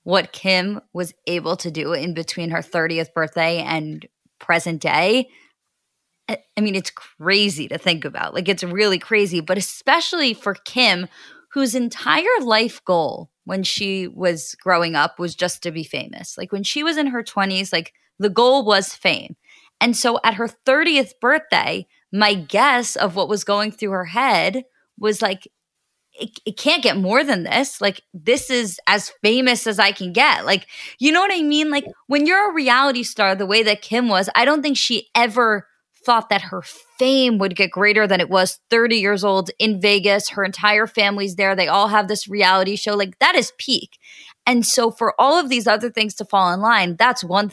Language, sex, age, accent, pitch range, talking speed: English, female, 20-39, American, 185-240 Hz, 195 wpm